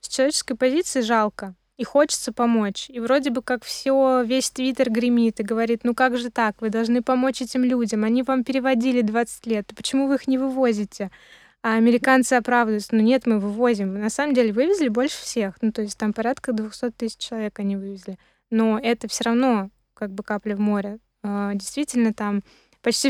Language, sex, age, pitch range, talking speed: Russian, female, 20-39, 215-255 Hz, 185 wpm